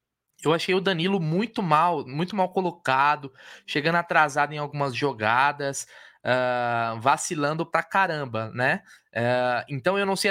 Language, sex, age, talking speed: Portuguese, male, 20-39, 140 wpm